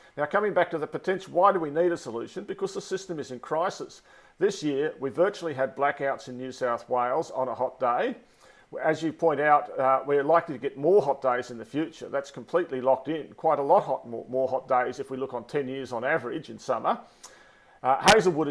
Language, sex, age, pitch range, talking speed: English, male, 40-59, 130-170 Hz, 225 wpm